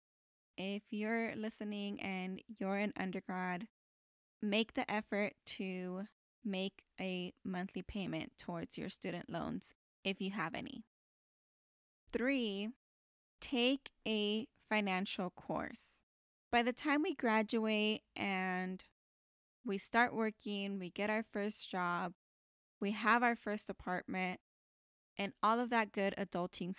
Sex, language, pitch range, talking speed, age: female, English, 190-225 Hz, 120 wpm, 10-29